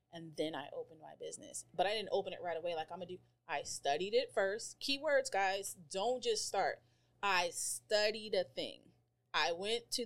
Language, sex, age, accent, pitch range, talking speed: English, female, 30-49, American, 135-225 Hz, 205 wpm